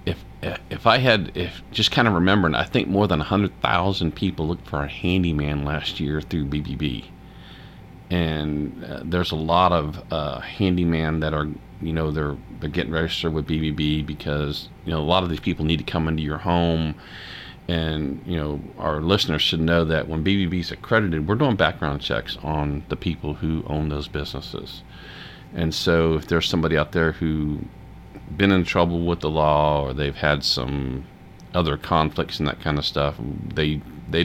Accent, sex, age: American, male, 40-59